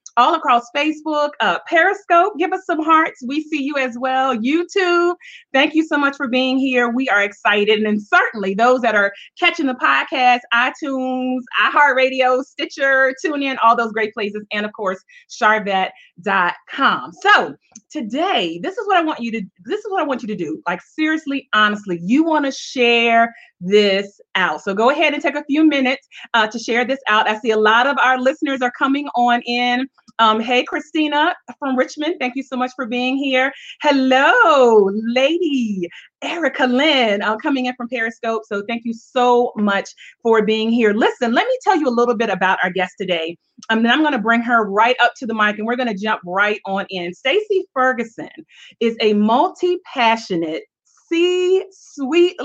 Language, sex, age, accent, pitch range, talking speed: English, female, 30-49, American, 225-300 Hz, 190 wpm